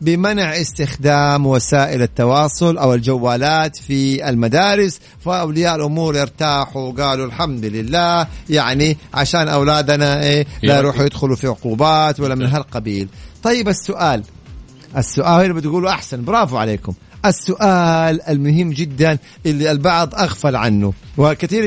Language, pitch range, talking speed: Arabic, 135-180 Hz, 115 wpm